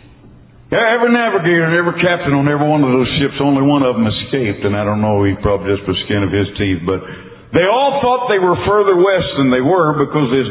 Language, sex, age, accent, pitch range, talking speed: English, male, 60-79, American, 100-135 Hz, 240 wpm